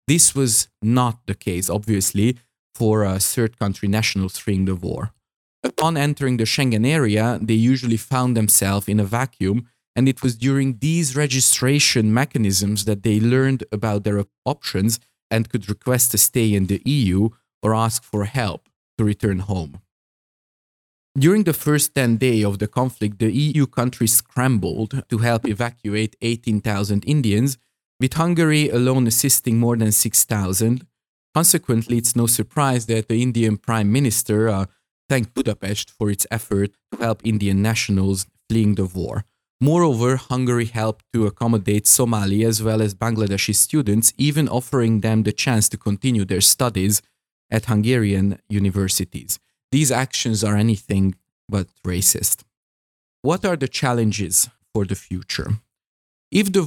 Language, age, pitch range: English, 20-39, 105-125 Hz